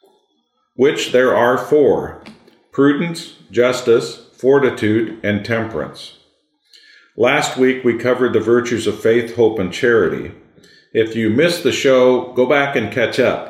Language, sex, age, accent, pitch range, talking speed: English, male, 50-69, American, 95-120 Hz, 135 wpm